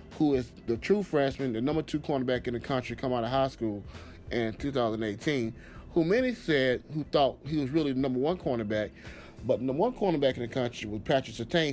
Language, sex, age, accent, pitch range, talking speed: English, male, 30-49, American, 110-150 Hz, 215 wpm